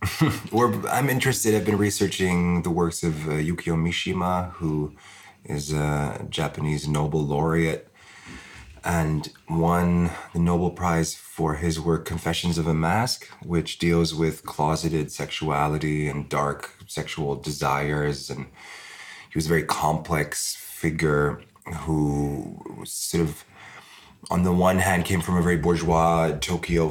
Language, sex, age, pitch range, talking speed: English, male, 30-49, 80-90 Hz, 130 wpm